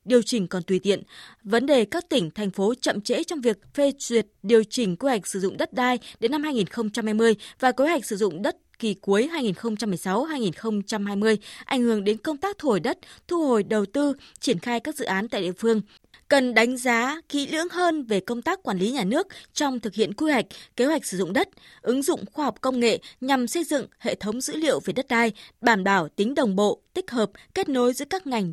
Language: Vietnamese